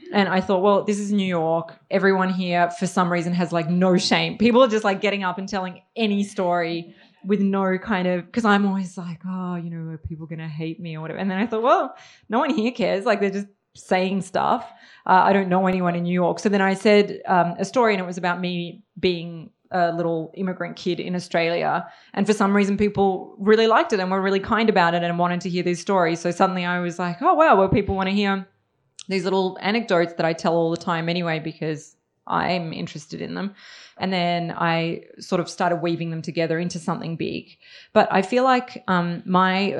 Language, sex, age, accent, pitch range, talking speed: English, female, 20-39, Australian, 170-195 Hz, 230 wpm